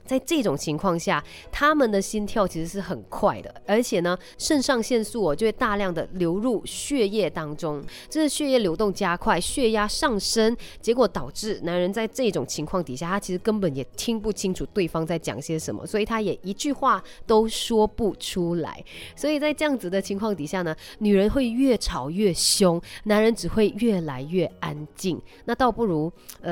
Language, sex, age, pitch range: Chinese, female, 20-39, 165-225 Hz